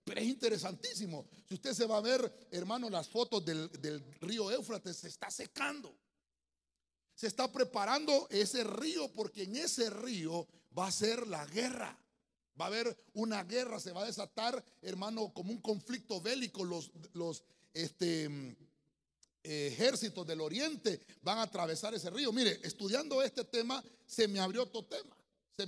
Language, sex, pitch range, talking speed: Spanish, male, 180-245 Hz, 155 wpm